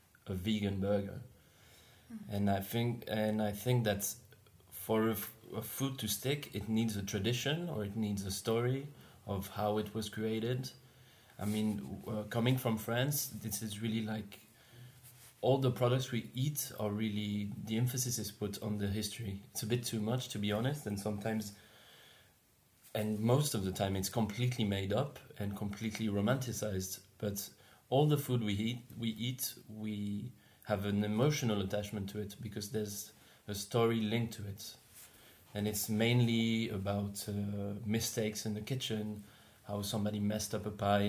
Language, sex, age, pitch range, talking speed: English, male, 30-49, 105-120 Hz, 165 wpm